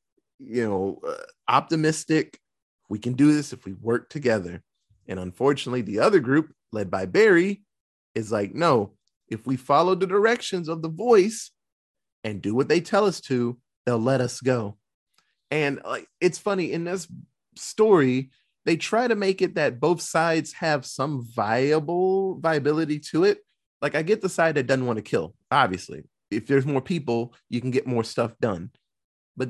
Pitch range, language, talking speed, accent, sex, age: 120-175 Hz, English, 175 wpm, American, male, 30-49